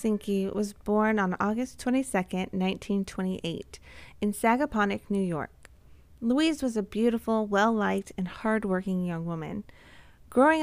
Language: English